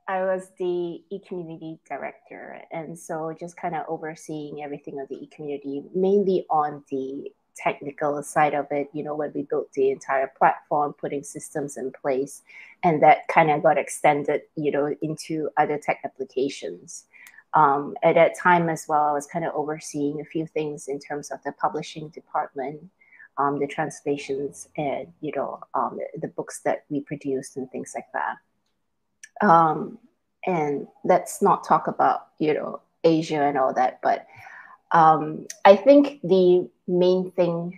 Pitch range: 145-175 Hz